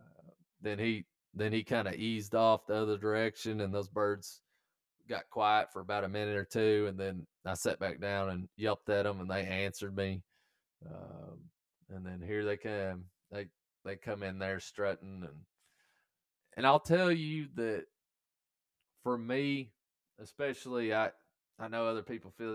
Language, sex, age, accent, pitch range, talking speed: English, male, 20-39, American, 90-110 Hz, 170 wpm